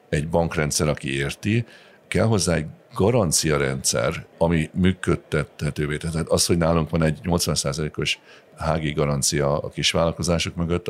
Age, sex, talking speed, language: 50-69, male, 125 wpm, Hungarian